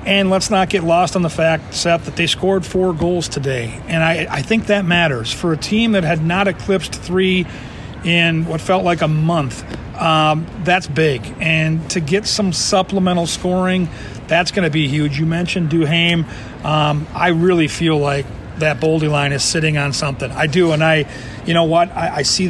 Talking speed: 195 wpm